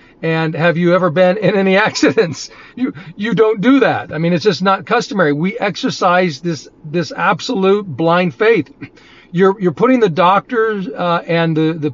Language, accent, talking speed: English, American, 175 wpm